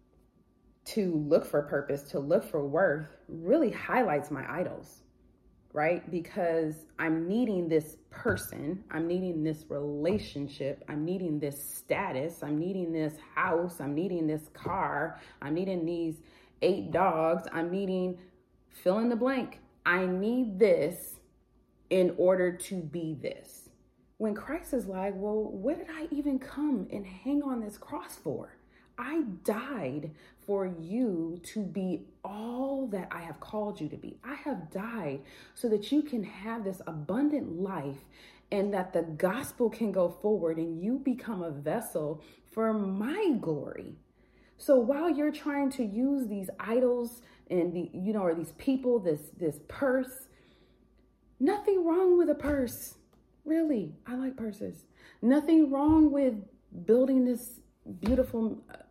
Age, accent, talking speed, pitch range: 30-49, American, 145 wpm, 165-260 Hz